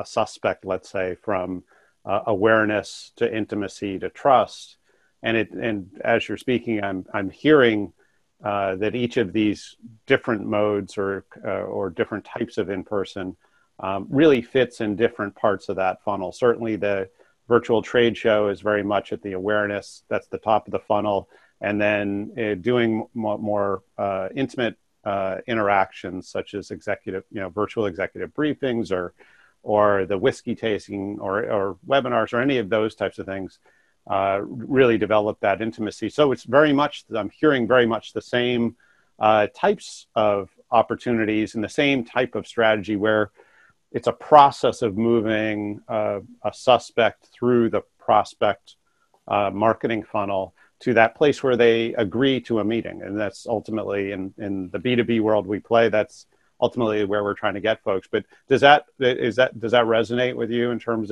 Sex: male